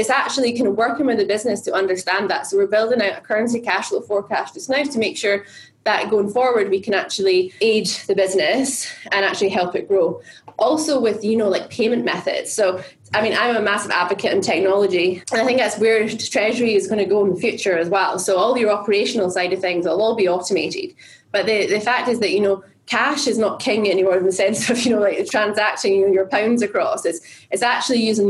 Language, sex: English, female